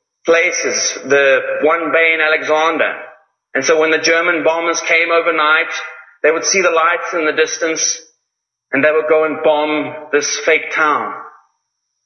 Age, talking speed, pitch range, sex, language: 30-49, 155 wpm, 155-175 Hz, male, English